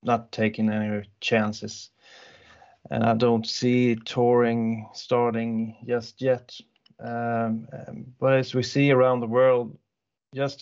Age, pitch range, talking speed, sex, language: 30-49, 115-130 Hz, 120 wpm, male, English